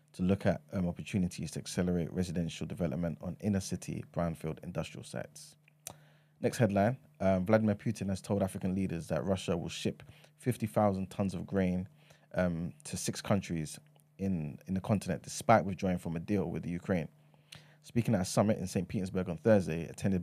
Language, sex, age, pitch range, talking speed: English, male, 20-39, 90-105 Hz, 170 wpm